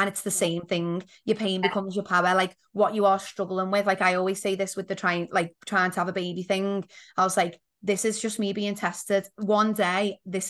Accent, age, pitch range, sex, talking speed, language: British, 20-39, 185-205 Hz, female, 245 wpm, English